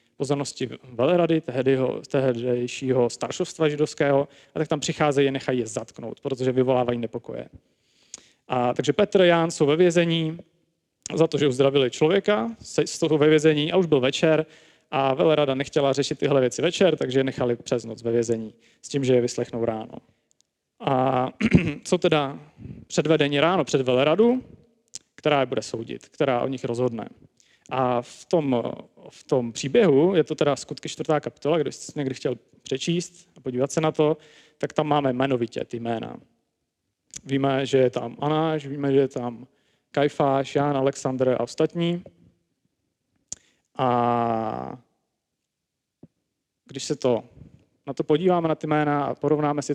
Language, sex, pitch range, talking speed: Czech, male, 125-155 Hz, 150 wpm